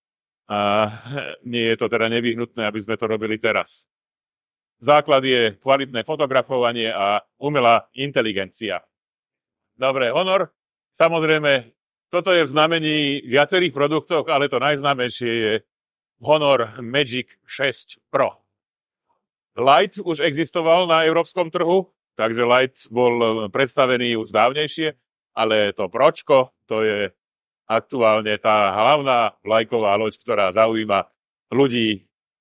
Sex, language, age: male, Slovak, 40-59